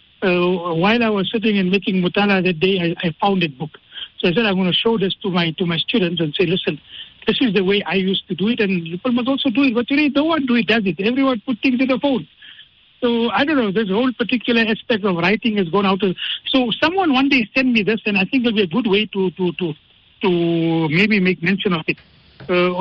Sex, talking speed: male, 265 wpm